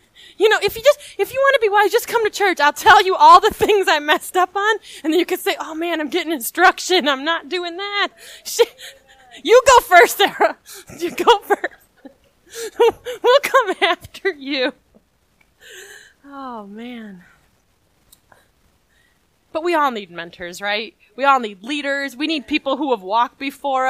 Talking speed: 175 wpm